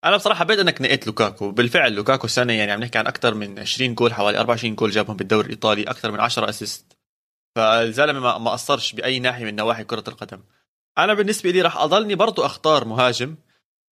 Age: 20-39